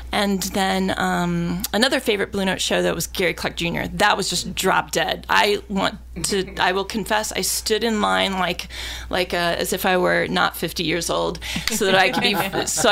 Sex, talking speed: female, 210 wpm